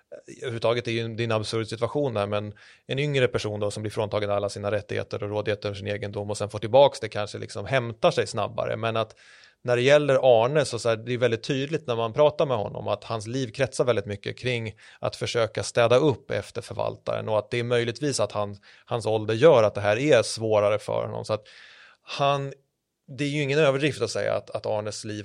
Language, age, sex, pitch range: Swedish, 30-49, male, 105-130 Hz